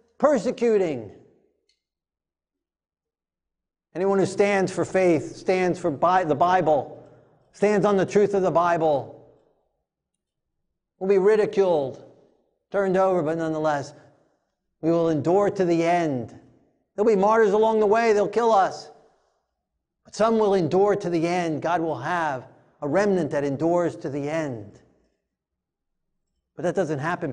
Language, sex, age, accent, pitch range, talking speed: English, male, 50-69, American, 155-205 Hz, 135 wpm